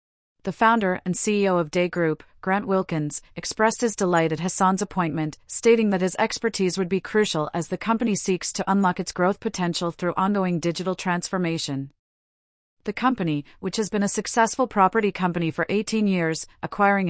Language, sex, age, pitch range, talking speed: English, female, 40-59, 170-200 Hz, 170 wpm